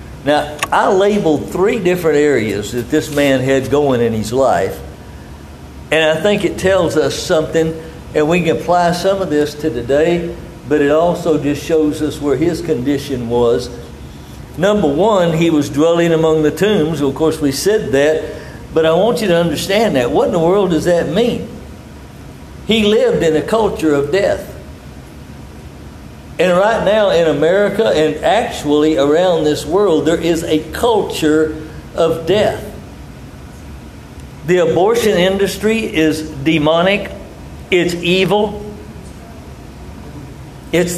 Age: 60-79